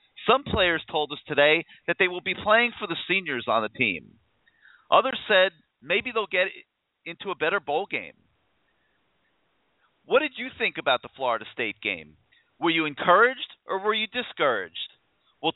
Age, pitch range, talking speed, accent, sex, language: 40-59, 160-225 Hz, 165 wpm, American, male, English